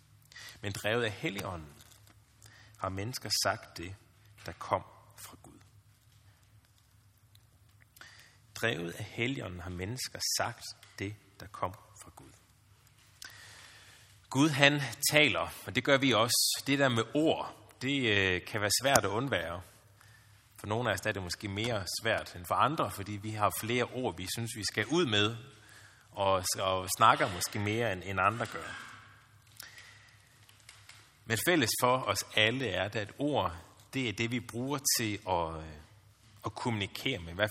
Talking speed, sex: 145 wpm, male